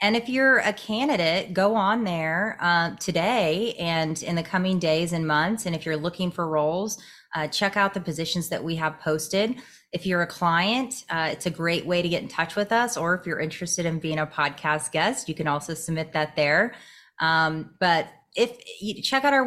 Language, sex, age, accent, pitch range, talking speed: English, female, 30-49, American, 160-200 Hz, 215 wpm